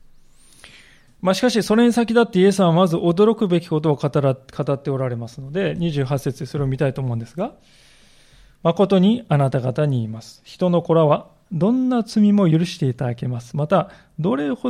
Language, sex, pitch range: Japanese, male, 145-195 Hz